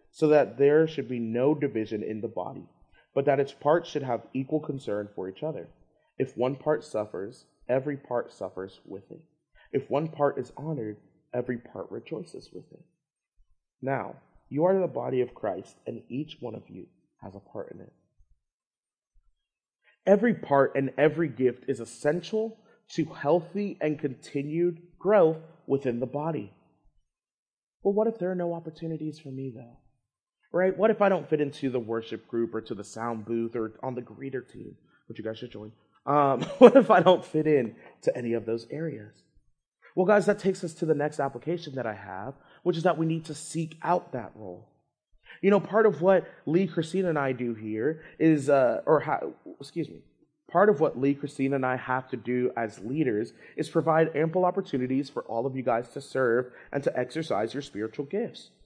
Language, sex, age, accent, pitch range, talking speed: English, male, 30-49, American, 120-165 Hz, 190 wpm